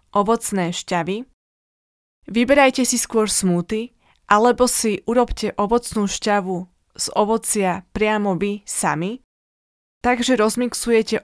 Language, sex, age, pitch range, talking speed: Slovak, female, 20-39, 190-230 Hz, 95 wpm